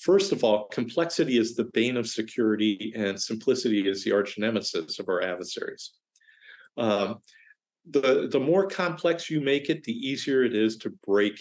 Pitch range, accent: 115-180 Hz, American